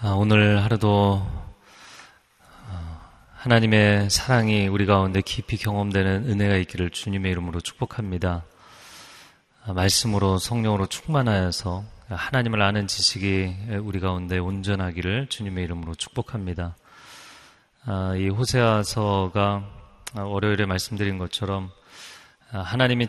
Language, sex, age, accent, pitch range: Korean, male, 30-49, native, 90-110 Hz